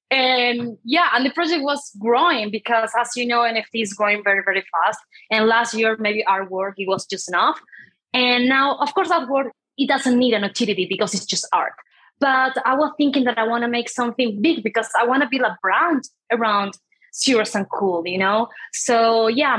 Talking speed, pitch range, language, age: 200 wpm, 200-265 Hz, English, 20-39